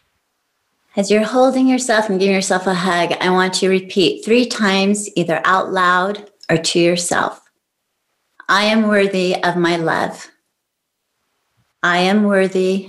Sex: female